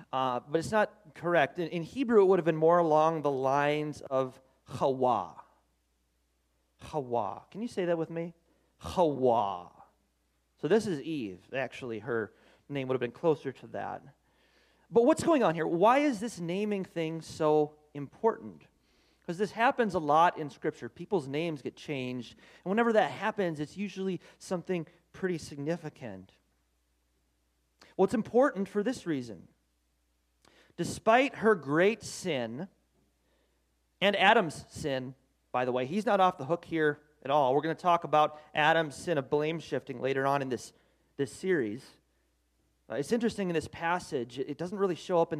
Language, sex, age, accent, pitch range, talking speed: English, male, 30-49, American, 120-175 Hz, 165 wpm